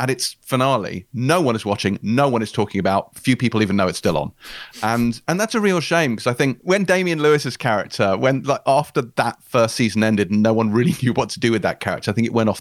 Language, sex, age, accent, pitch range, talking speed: English, male, 30-49, British, 105-135 Hz, 260 wpm